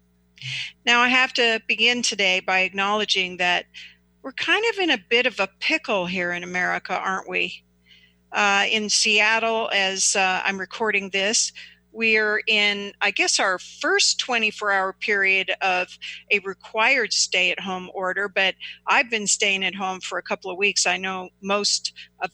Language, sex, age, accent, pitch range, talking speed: English, female, 50-69, American, 185-230 Hz, 160 wpm